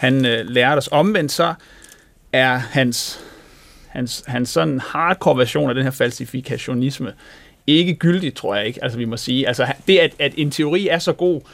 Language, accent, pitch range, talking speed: Danish, native, 120-150 Hz, 180 wpm